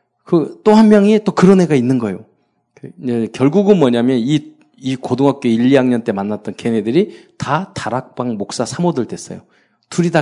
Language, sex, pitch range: Korean, male, 110-150 Hz